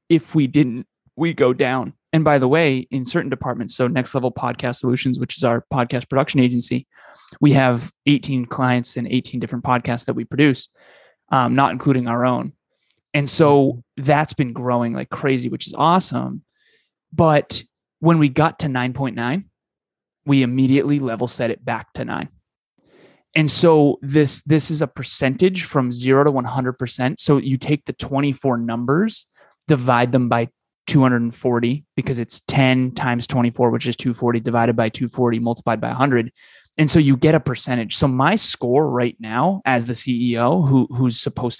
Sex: male